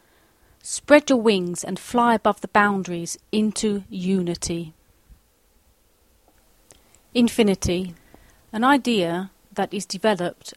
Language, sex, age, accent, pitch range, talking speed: English, female, 40-59, British, 175-225 Hz, 90 wpm